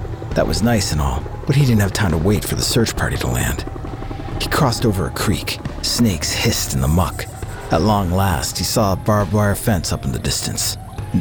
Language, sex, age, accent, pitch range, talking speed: English, male, 40-59, American, 85-110 Hz, 225 wpm